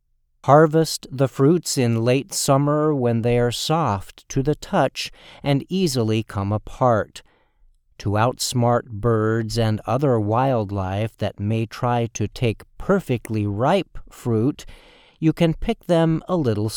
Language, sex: English, male